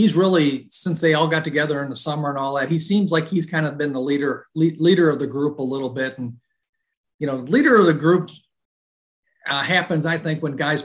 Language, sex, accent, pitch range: English, male, American, 130-165 Hz